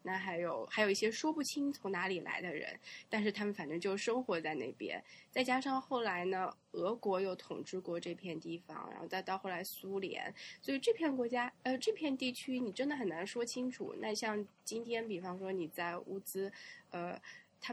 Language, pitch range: Chinese, 185-235 Hz